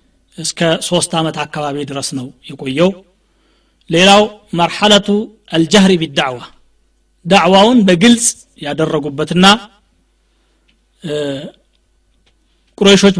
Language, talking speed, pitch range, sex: Amharic, 75 wpm, 155-195 Hz, male